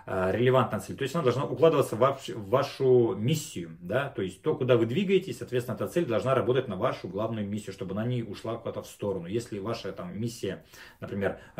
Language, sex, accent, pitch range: Russian, male, native, 105-130 Hz